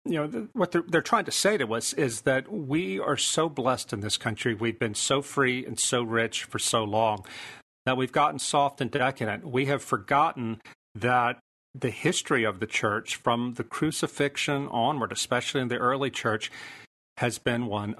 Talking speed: 185 wpm